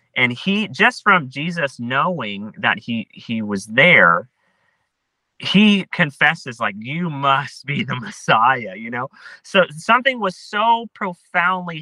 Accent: American